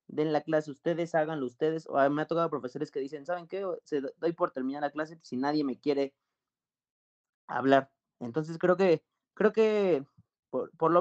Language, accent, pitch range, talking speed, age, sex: Spanish, Mexican, 140-175 Hz, 200 wpm, 30-49, male